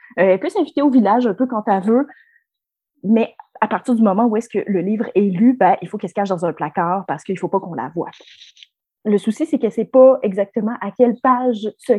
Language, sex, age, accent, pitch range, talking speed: French, female, 30-49, Canadian, 200-250 Hz, 255 wpm